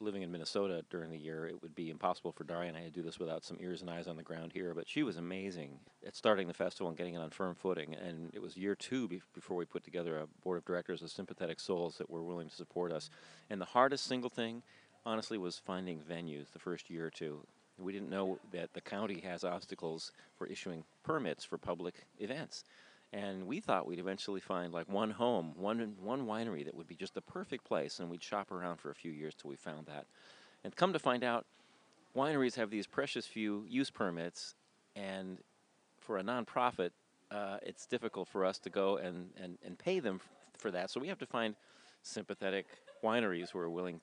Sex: male